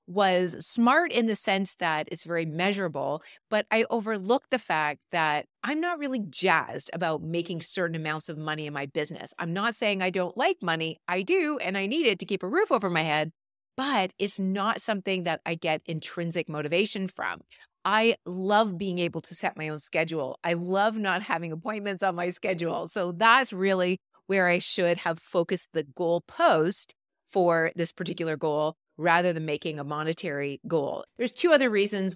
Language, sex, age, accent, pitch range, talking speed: English, female, 30-49, American, 155-200 Hz, 185 wpm